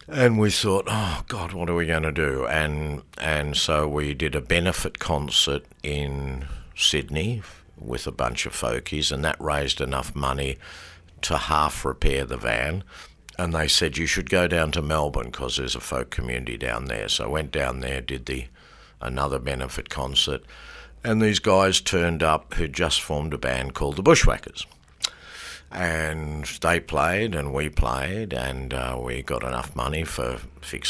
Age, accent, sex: 60-79, Australian, male